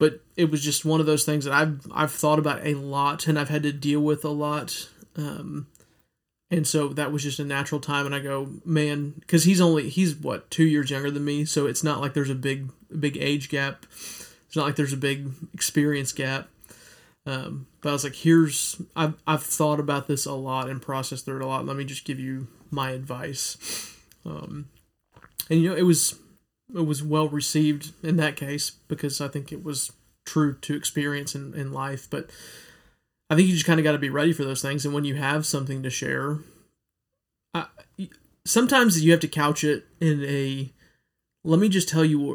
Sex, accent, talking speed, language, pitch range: male, American, 210 wpm, English, 140-155 Hz